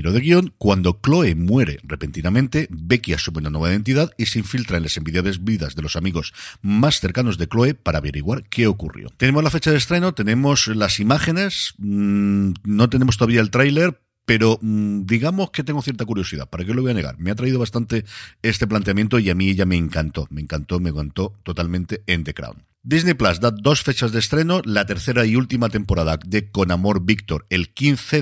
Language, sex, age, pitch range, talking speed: Spanish, male, 50-69, 90-120 Hz, 195 wpm